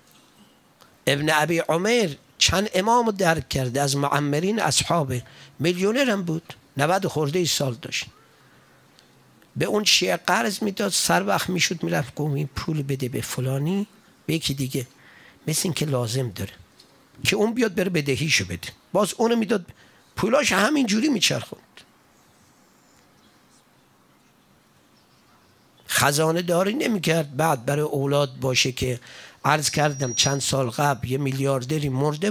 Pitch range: 130-180 Hz